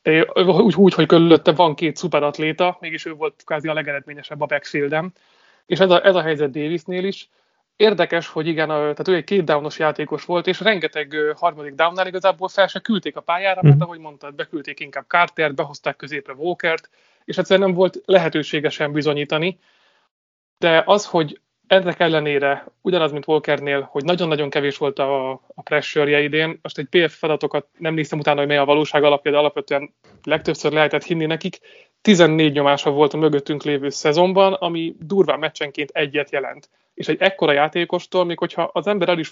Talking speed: 170 wpm